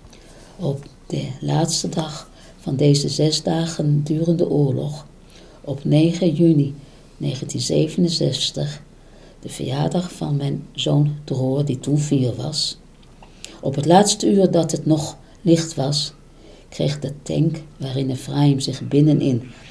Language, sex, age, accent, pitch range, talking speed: Dutch, female, 50-69, Dutch, 130-155 Hz, 120 wpm